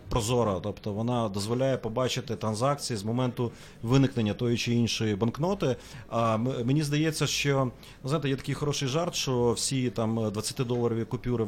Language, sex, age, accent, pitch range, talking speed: Ukrainian, male, 30-49, native, 115-140 Hz, 140 wpm